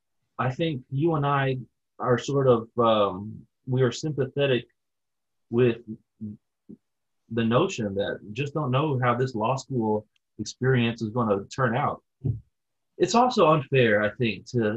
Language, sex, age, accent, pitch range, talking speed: English, male, 30-49, American, 110-130 Hz, 140 wpm